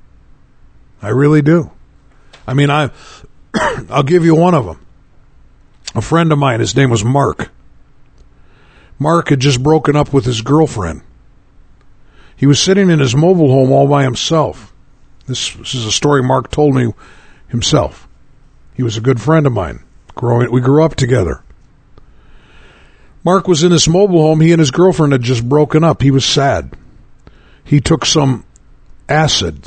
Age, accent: 50-69, American